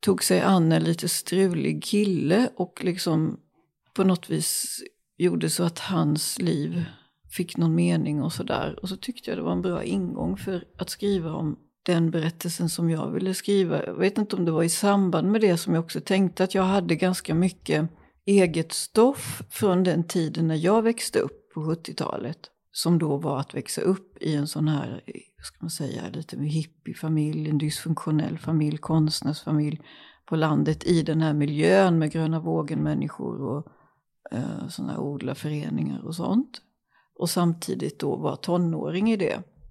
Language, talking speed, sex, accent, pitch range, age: Swedish, 170 wpm, female, native, 155-185 Hz, 40-59